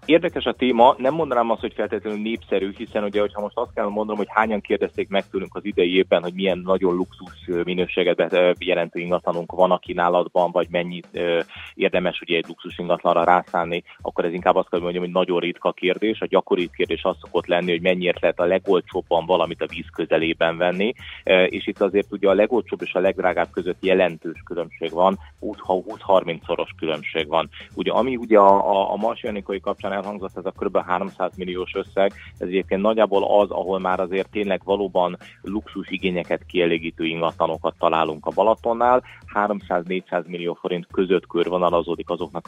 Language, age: Hungarian, 30-49